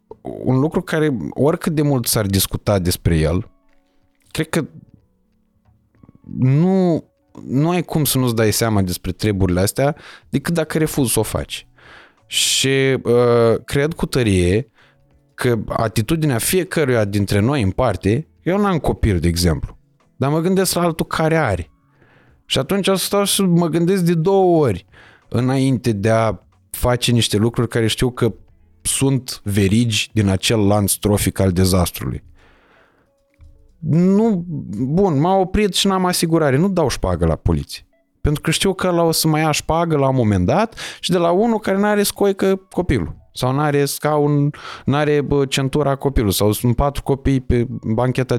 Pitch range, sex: 105-160 Hz, male